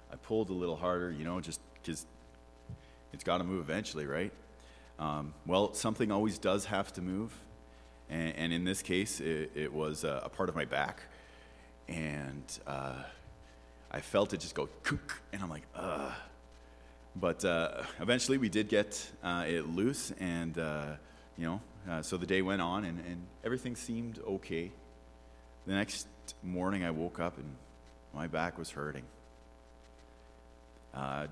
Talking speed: 160 wpm